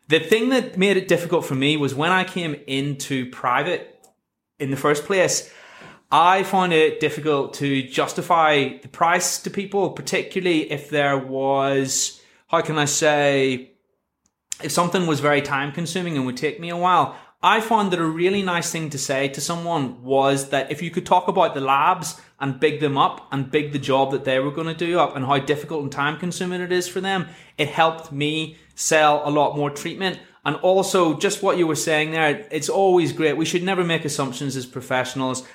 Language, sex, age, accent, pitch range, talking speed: English, male, 20-39, British, 140-180 Hz, 200 wpm